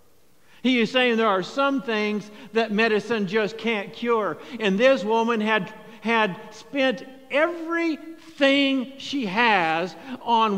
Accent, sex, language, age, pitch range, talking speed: American, male, English, 50-69, 210-240 Hz, 125 wpm